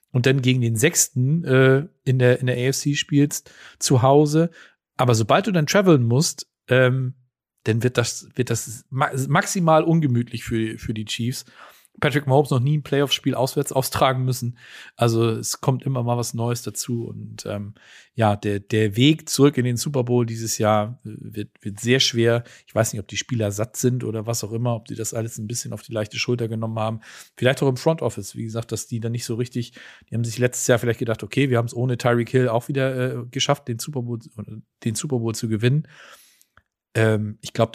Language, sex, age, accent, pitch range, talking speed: German, male, 40-59, German, 105-135 Hz, 210 wpm